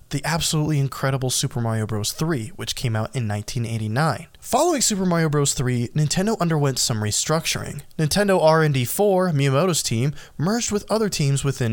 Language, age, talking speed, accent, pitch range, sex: English, 20-39, 155 wpm, American, 120-175 Hz, male